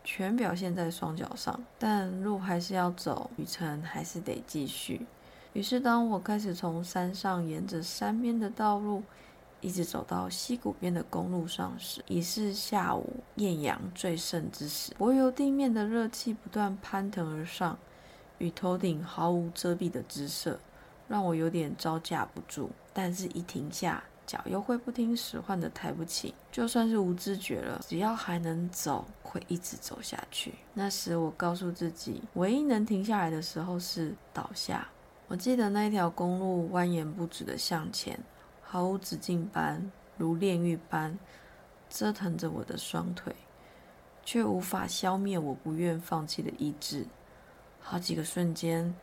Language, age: Chinese, 20-39